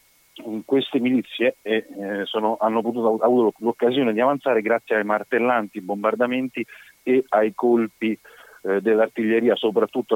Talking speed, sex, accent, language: 110 wpm, male, native, Italian